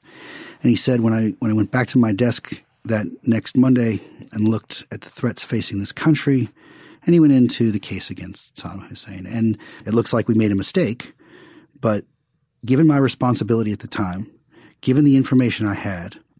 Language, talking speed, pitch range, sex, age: English, 190 wpm, 105-125 Hz, male, 40-59